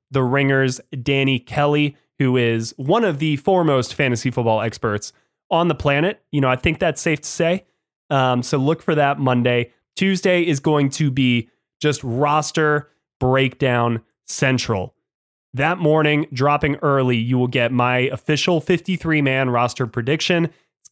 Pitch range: 125-155 Hz